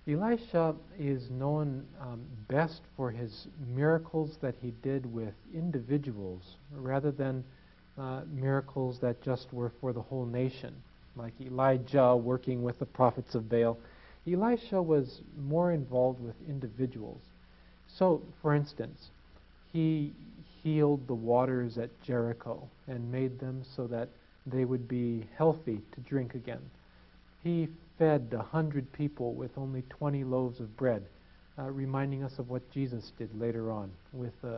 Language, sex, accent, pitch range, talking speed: Spanish, male, American, 120-145 Hz, 140 wpm